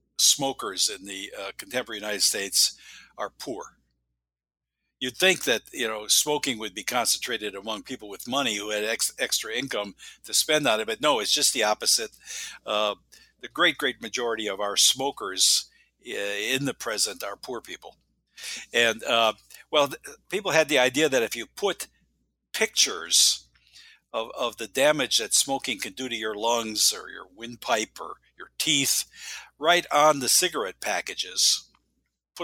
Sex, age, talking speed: male, 60-79, 165 wpm